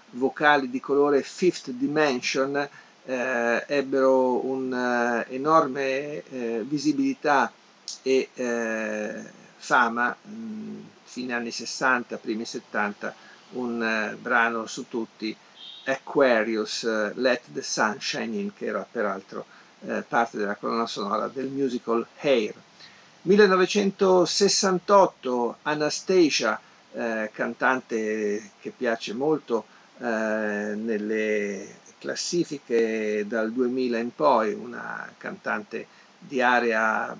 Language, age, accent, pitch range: Italian, 50-69, native, 115-155 Hz